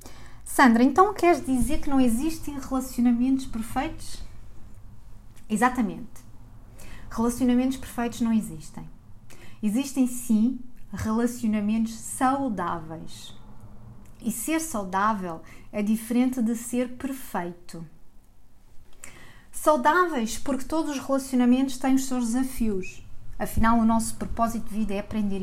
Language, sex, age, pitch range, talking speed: Portuguese, female, 20-39, 190-250 Hz, 100 wpm